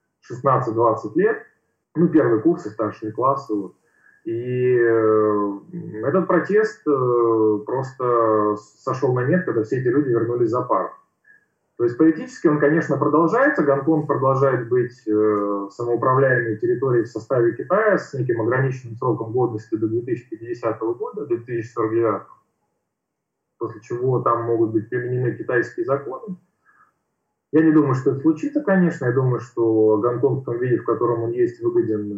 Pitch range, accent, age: 110-160 Hz, native, 20-39